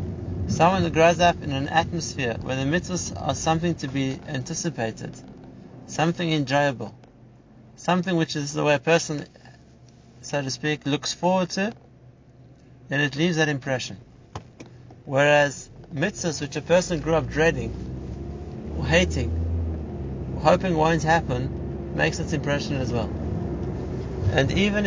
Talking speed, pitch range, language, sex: 135 wpm, 120-160 Hz, English, male